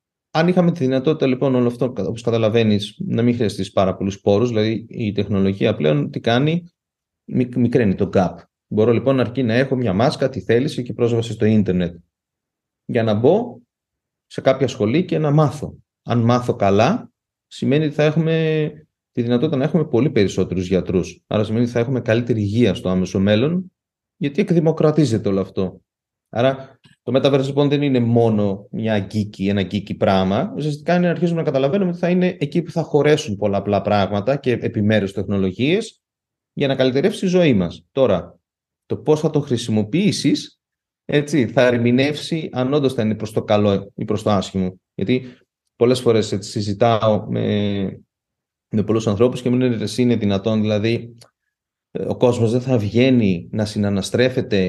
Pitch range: 105-140 Hz